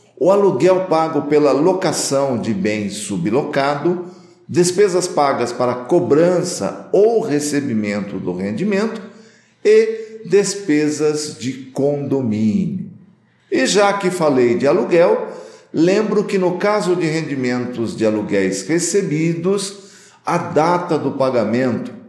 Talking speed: 105 wpm